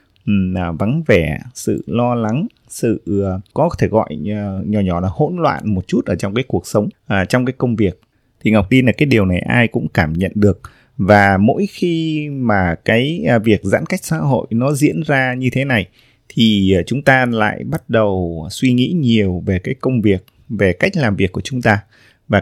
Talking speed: 200 wpm